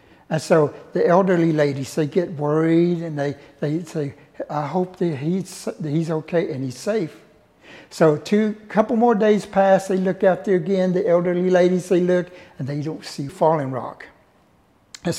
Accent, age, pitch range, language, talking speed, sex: American, 60-79, 145-175 Hz, English, 180 wpm, male